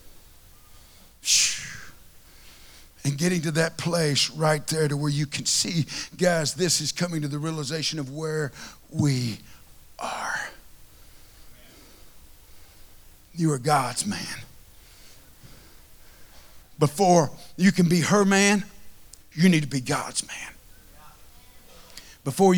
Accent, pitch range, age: American, 140-210 Hz, 50-69